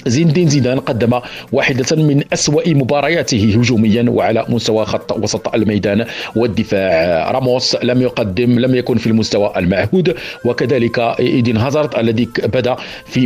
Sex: male